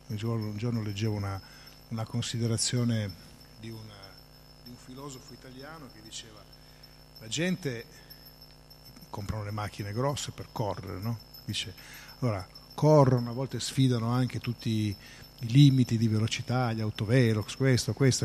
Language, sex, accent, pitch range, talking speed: Italian, male, native, 110-135 Hz, 125 wpm